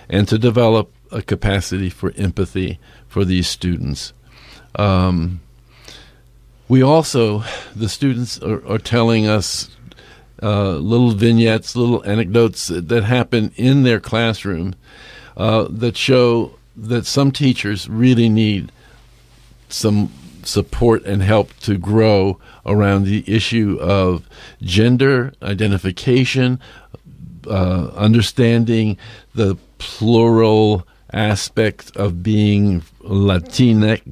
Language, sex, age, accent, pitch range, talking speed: English, male, 50-69, American, 95-120 Hz, 100 wpm